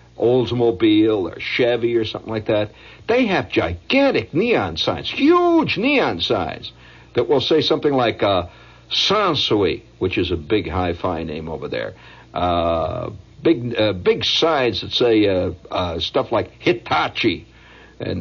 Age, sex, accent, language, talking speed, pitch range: 60-79, male, American, English, 140 wpm, 90-115 Hz